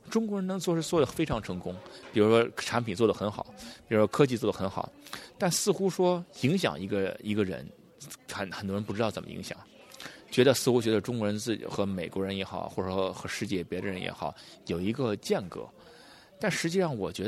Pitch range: 100-165 Hz